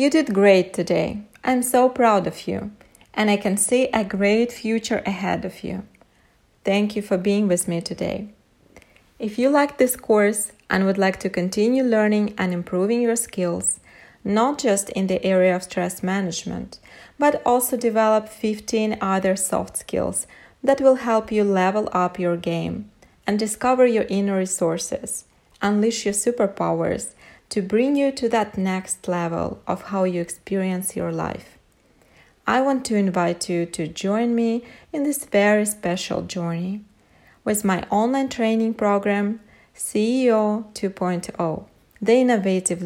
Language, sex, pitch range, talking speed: English, female, 190-235 Hz, 150 wpm